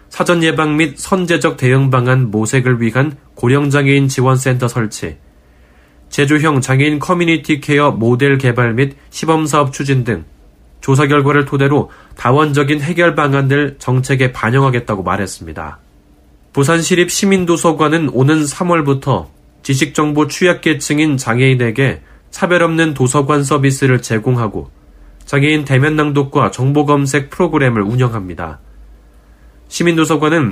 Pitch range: 115-150 Hz